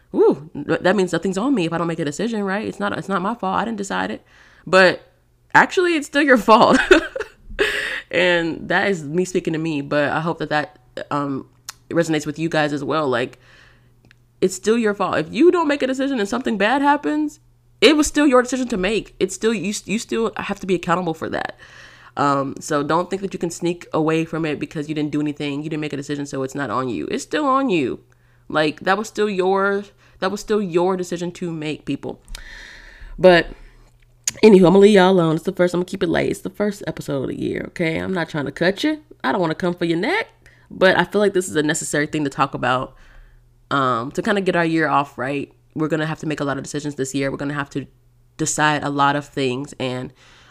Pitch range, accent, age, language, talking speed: 145-195 Hz, American, 20-39, English, 245 wpm